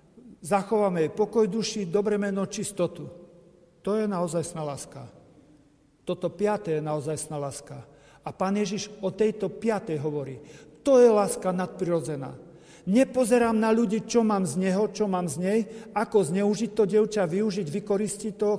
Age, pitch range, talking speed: 50-69, 180-225 Hz, 145 wpm